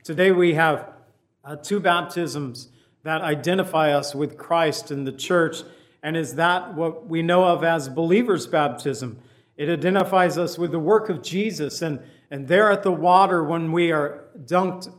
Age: 50-69